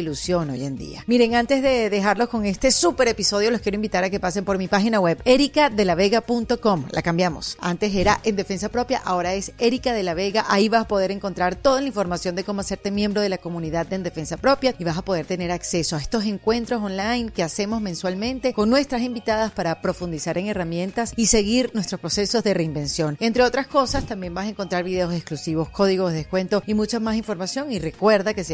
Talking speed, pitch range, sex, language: 210 wpm, 180-235 Hz, female, Spanish